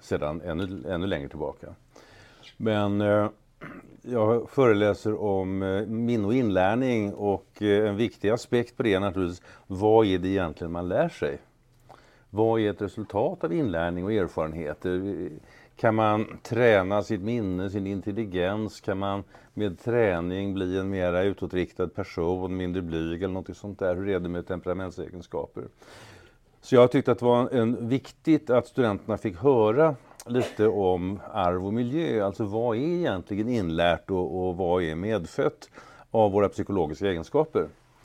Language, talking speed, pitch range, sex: Swedish, 145 wpm, 90-115 Hz, male